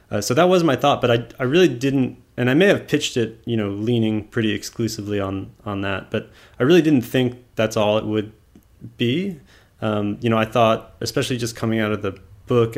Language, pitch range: English, 100-120 Hz